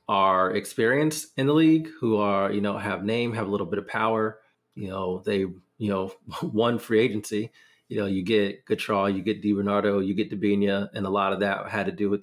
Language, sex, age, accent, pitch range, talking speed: English, male, 30-49, American, 100-115 Hz, 220 wpm